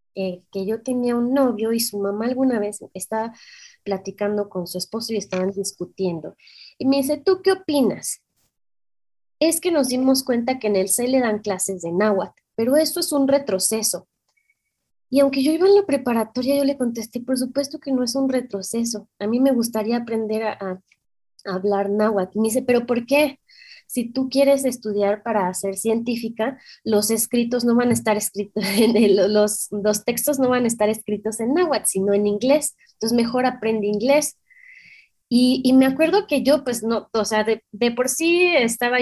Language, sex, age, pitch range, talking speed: Spanish, female, 20-39, 205-265 Hz, 190 wpm